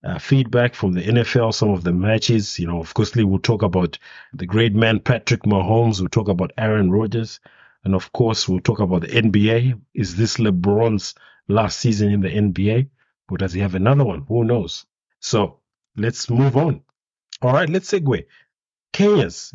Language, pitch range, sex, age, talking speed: English, 100-125 Hz, male, 50-69, 180 wpm